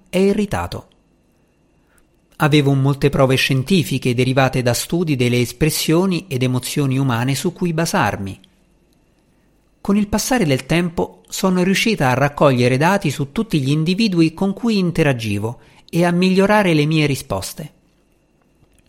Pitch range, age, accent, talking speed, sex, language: 125-185 Hz, 50-69, native, 125 wpm, male, Italian